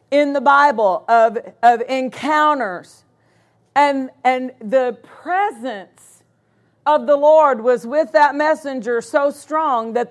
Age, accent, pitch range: 50-69, American, 260-320 Hz